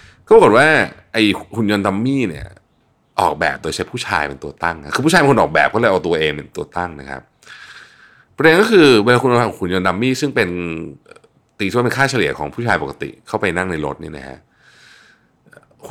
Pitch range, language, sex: 85-120 Hz, Thai, male